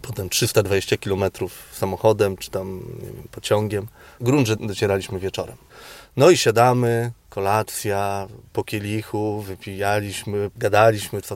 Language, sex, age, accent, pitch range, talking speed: Polish, male, 30-49, native, 105-135 Hz, 110 wpm